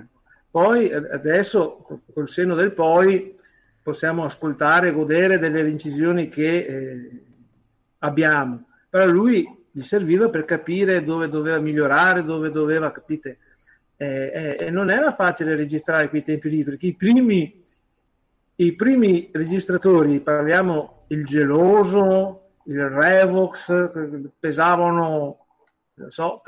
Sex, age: male, 50-69